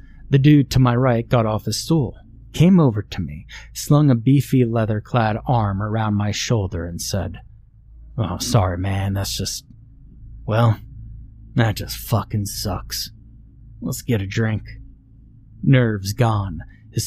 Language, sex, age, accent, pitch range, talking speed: English, male, 30-49, American, 100-120 Hz, 145 wpm